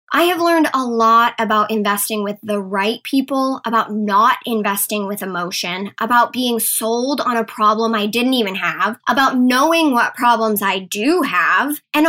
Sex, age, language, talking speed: male, 10-29, English, 170 wpm